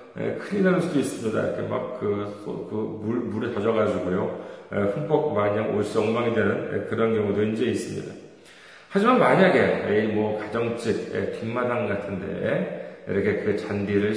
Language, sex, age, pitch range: Korean, male, 40-59, 115-175 Hz